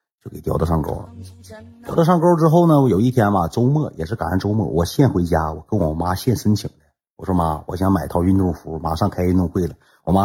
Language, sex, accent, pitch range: Chinese, male, native, 85-115 Hz